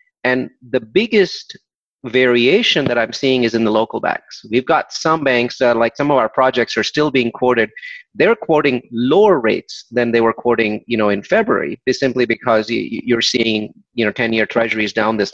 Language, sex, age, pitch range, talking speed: English, male, 30-49, 115-130 Hz, 190 wpm